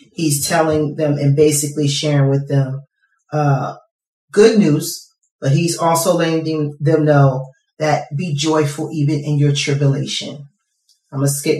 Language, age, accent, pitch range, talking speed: English, 30-49, American, 140-160 Hz, 145 wpm